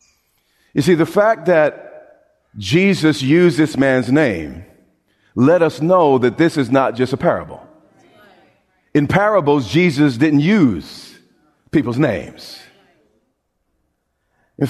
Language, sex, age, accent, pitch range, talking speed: English, male, 40-59, American, 140-200 Hz, 115 wpm